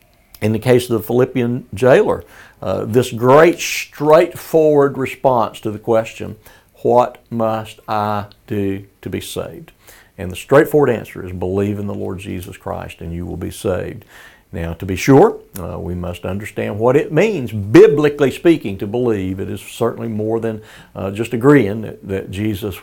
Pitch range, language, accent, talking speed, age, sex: 100-125 Hz, English, American, 170 wpm, 60-79, male